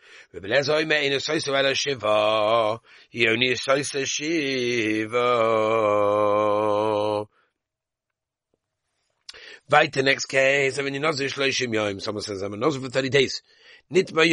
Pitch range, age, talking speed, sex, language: 110-145 Hz, 40-59, 40 wpm, male, English